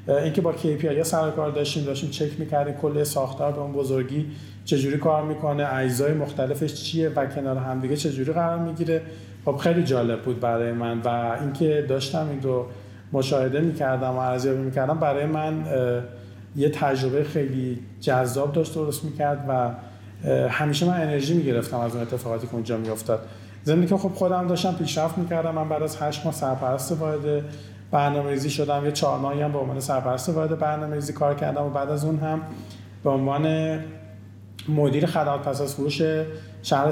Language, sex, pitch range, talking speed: Persian, male, 130-160 Hz, 160 wpm